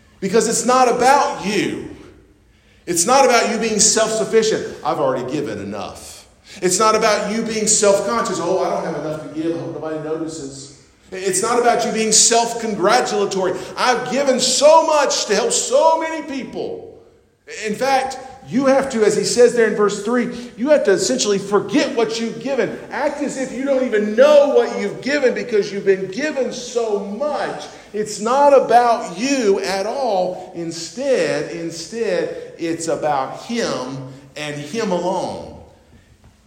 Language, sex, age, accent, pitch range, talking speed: English, male, 40-59, American, 175-240 Hz, 160 wpm